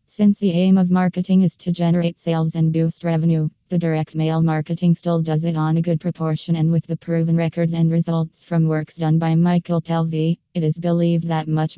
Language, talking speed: English, 210 wpm